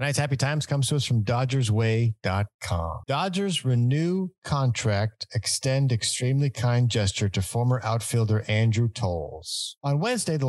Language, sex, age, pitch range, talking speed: English, male, 50-69, 100-125 Hz, 130 wpm